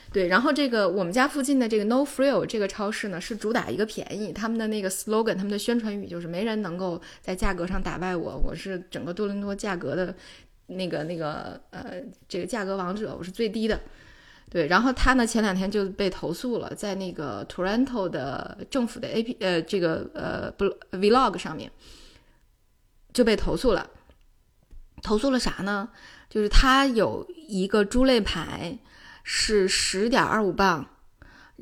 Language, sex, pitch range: Chinese, female, 185-230 Hz